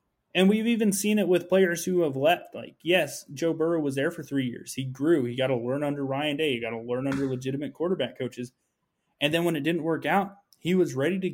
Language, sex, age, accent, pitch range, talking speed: English, male, 20-39, American, 130-170 Hz, 250 wpm